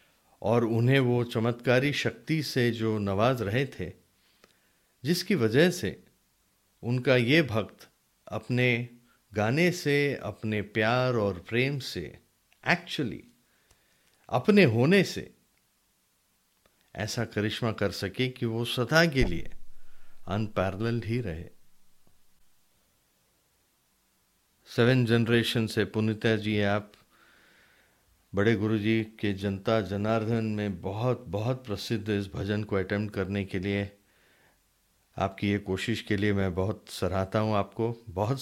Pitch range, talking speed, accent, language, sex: 100-120 Hz, 115 wpm, Indian, English, male